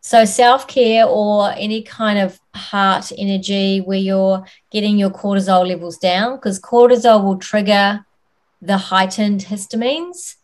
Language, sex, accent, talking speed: English, female, Australian, 125 wpm